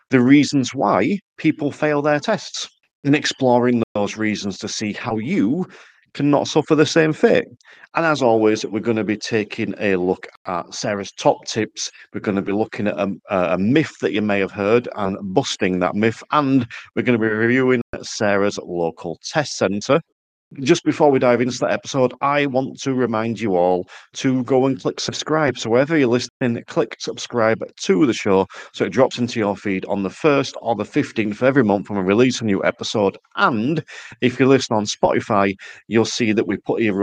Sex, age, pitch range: male, 40-59, 100-130 Hz